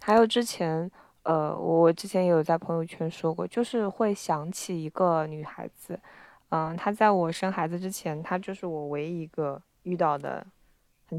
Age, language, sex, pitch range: 20-39, Chinese, female, 170-220 Hz